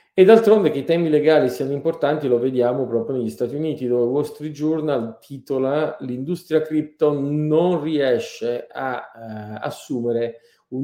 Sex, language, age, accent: male, Italian, 40-59, native